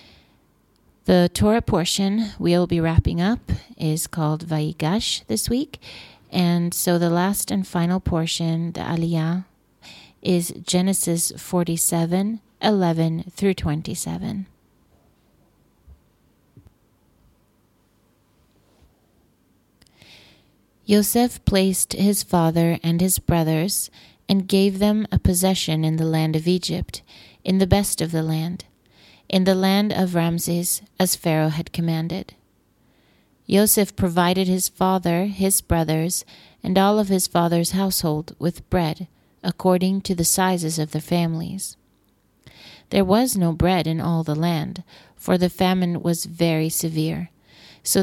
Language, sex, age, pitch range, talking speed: English, female, 30-49, 160-190 Hz, 120 wpm